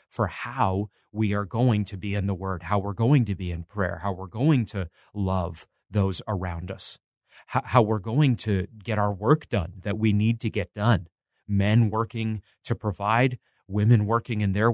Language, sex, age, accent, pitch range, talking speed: English, male, 30-49, American, 100-125 Hz, 190 wpm